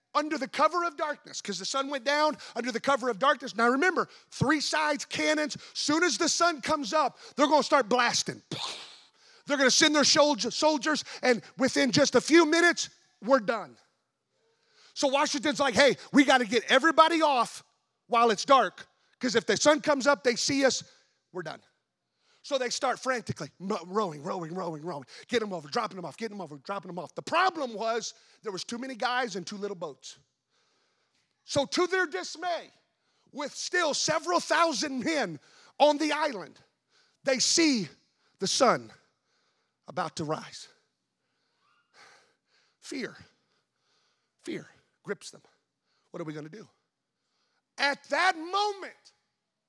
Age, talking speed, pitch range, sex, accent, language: 30-49, 160 wpm, 230-310 Hz, male, American, English